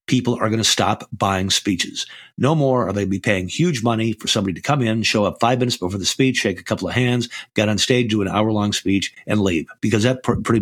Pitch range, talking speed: 100-120 Hz, 255 wpm